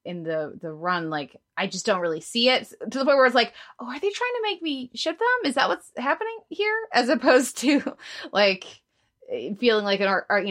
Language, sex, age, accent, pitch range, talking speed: English, female, 20-39, American, 185-255 Hz, 230 wpm